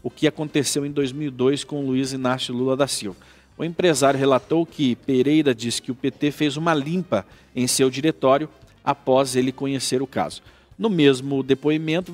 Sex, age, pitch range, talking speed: male, 50-69, 125-160 Hz, 170 wpm